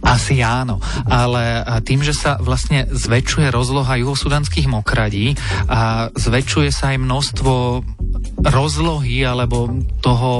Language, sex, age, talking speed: Slovak, male, 30-49, 110 wpm